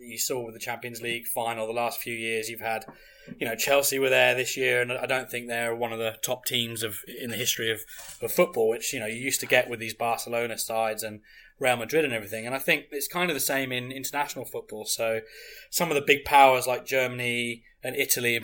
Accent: British